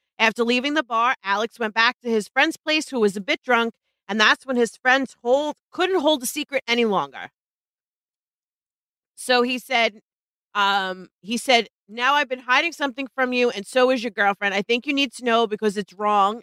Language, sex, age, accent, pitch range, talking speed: English, female, 40-59, American, 215-270 Hz, 195 wpm